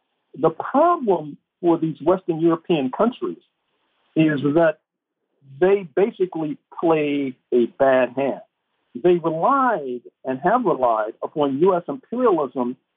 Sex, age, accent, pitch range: male, 50-69, American, 145-200 Hz